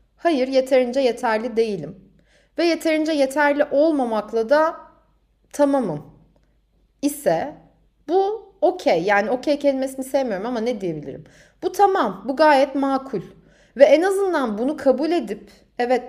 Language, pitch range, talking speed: Turkish, 225-295 Hz, 120 wpm